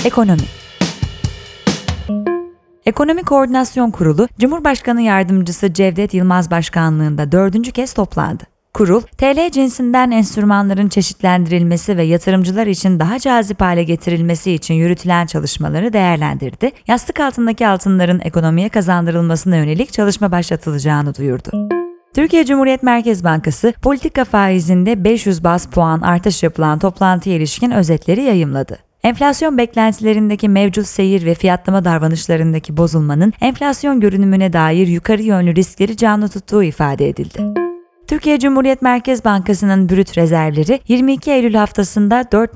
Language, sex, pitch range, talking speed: Turkish, female, 175-240 Hz, 115 wpm